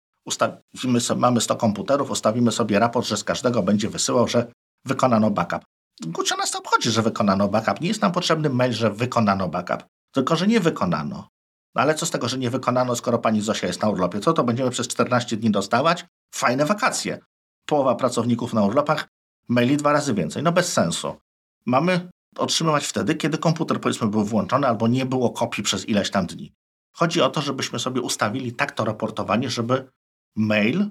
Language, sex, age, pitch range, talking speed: Polish, male, 50-69, 110-155 Hz, 180 wpm